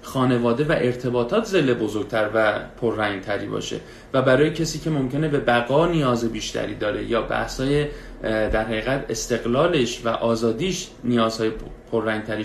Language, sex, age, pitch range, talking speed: Persian, male, 30-49, 115-150 Hz, 130 wpm